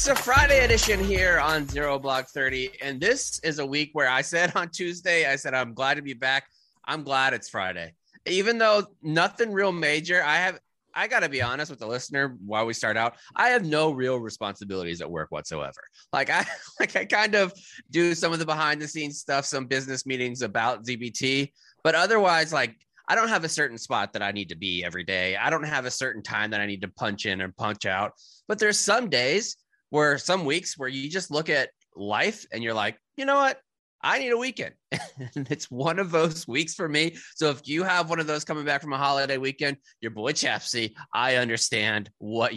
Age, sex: 20-39, male